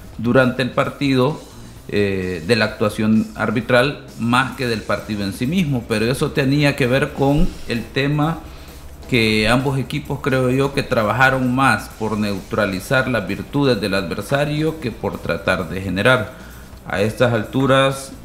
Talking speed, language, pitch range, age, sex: 150 wpm, Spanish, 105-130 Hz, 50-69, male